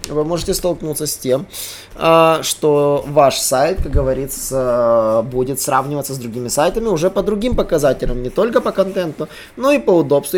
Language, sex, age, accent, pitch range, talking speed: Russian, male, 20-39, native, 135-195 Hz, 155 wpm